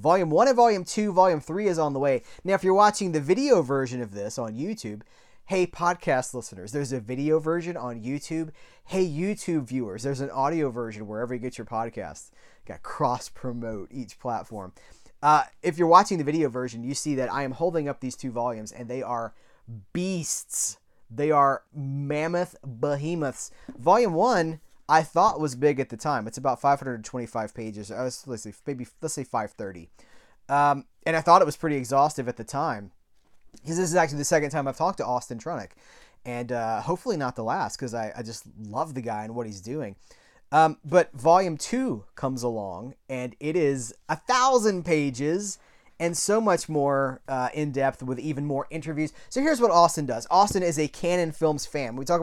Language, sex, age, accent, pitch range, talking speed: English, male, 30-49, American, 125-165 Hz, 195 wpm